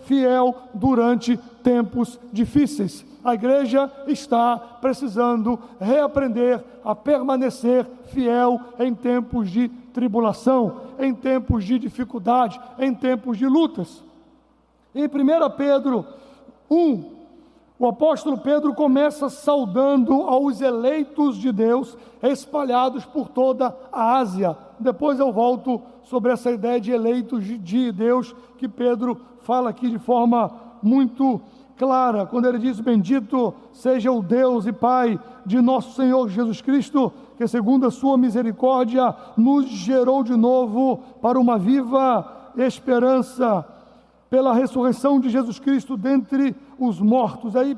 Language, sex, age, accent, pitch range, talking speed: English, male, 60-79, Brazilian, 245-275 Hz, 120 wpm